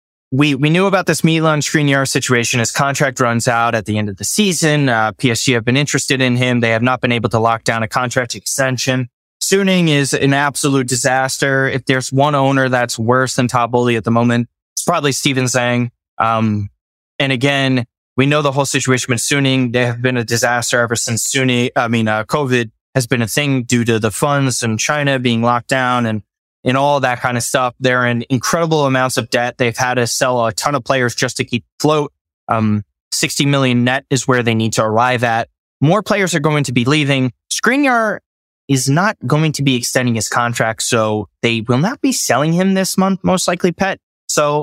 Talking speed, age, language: 210 wpm, 20-39, English